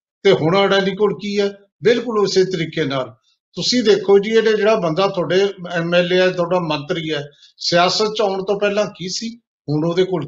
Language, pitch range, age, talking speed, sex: Punjabi, 160-200 Hz, 50-69, 180 wpm, male